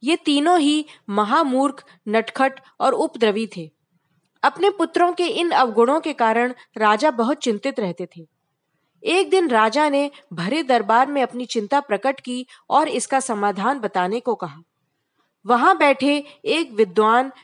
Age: 20-39